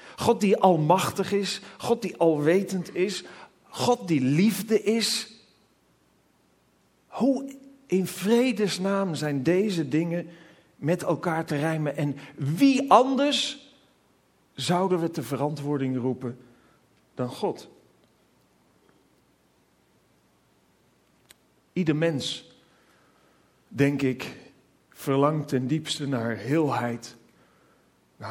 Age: 40-59